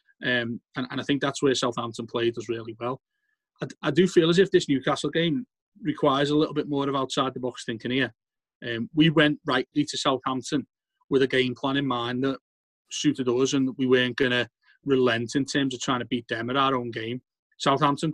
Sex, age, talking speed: male, 30-49, 210 wpm